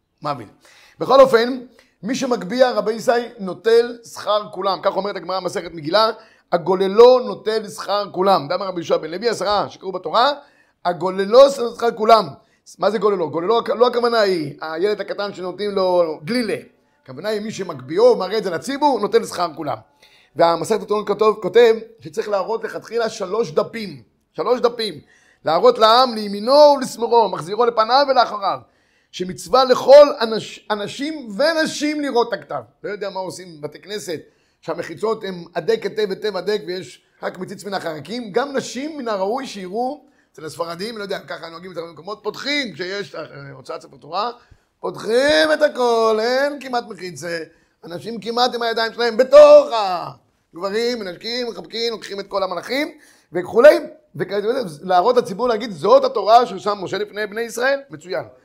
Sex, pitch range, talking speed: male, 185-245 Hz, 145 wpm